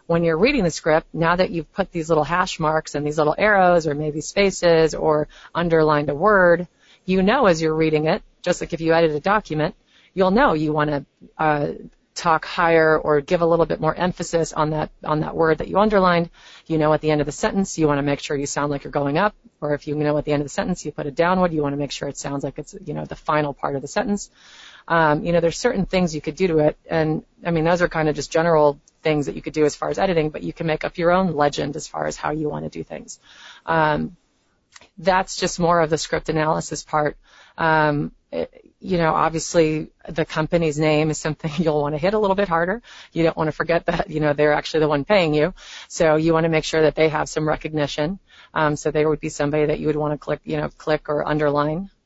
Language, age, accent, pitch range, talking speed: English, 30-49, American, 150-175 Hz, 260 wpm